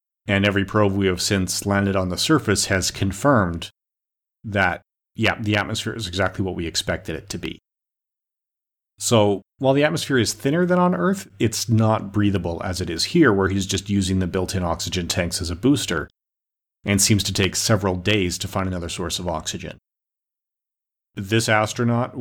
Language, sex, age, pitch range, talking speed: English, male, 40-59, 95-110 Hz, 180 wpm